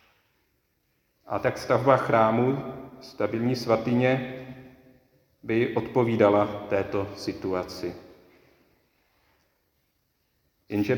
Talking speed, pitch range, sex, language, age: 60 wpm, 100-120 Hz, male, Czech, 40-59